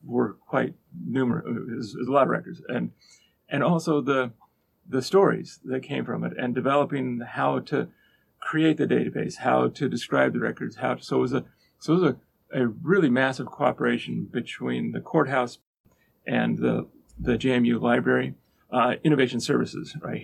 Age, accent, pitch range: 40-59, American, 115-145 Hz